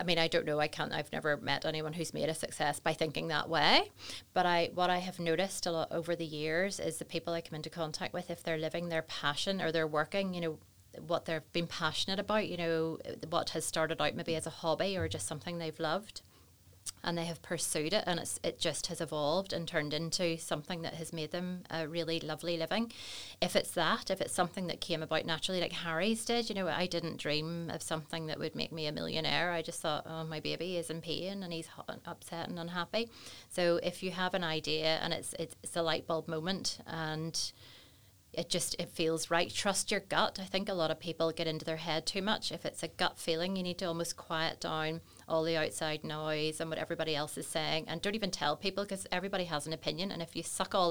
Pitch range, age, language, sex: 155-175 Hz, 30-49, English, female